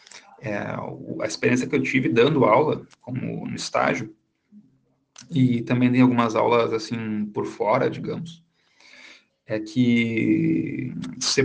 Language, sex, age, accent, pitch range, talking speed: French, male, 40-59, Brazilian, 120-155 Hz, 120 wpm